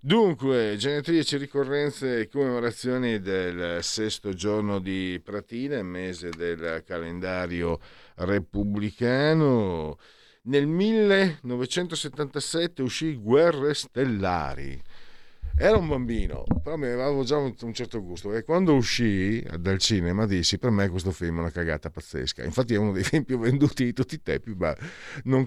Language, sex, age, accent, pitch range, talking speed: Italian, male, 50-69, native, 90-140 Hz, 130 wpm